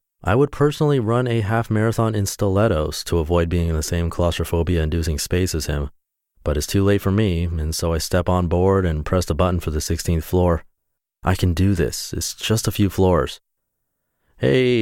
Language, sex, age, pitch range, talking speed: English, male, 30-49, 80-95 Hz, 200 wpm